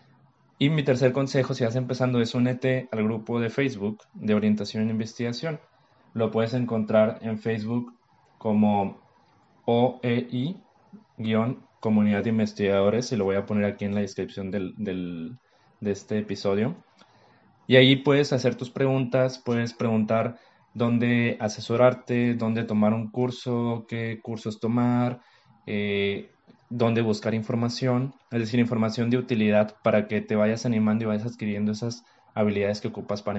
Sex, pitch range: male, 110-125 Hz